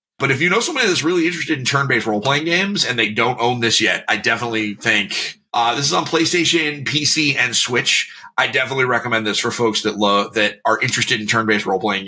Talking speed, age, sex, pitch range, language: 215 wpm, 30-49, male, 115-155 Hz, English